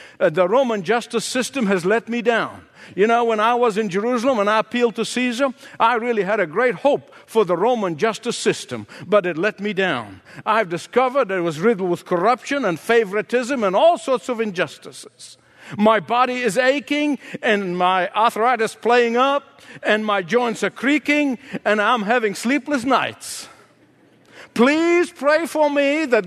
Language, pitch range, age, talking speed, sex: English, 205-275 Hz, 60-79, 170 wpm, male